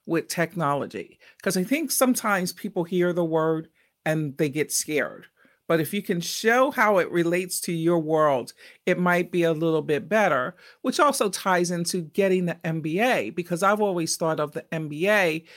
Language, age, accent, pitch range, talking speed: English, 50-69, American, 155-190 Hz, 175 wpm